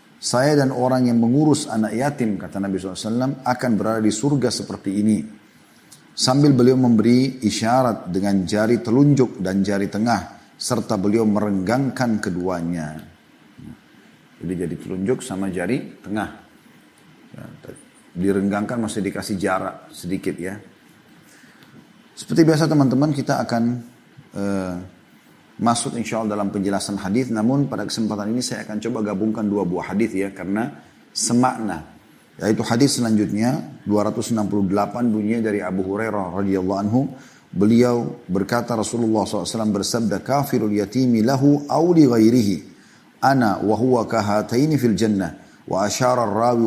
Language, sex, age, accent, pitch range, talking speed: Indonesian, male, 30-49, native, 100-125 Hz, 115 wpm